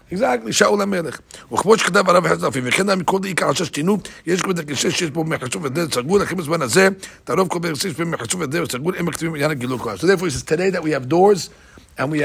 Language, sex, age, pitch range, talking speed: English, male, 60-79, 140-185 Hz, 105 wpm